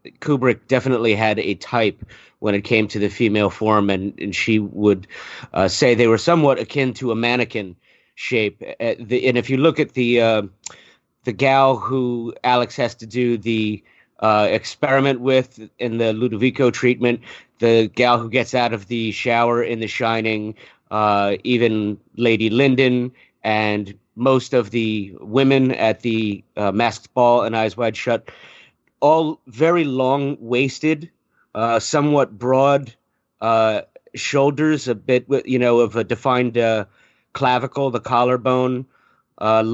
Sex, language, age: male, English, 30-49